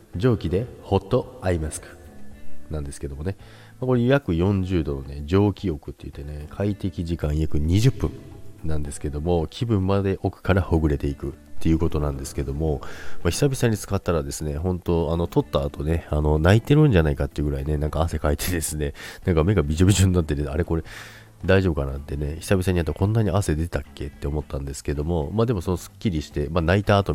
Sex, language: male, Japanese